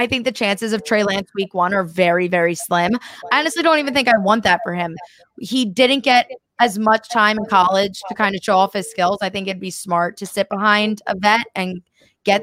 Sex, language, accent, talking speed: female, English, American, 240 wpm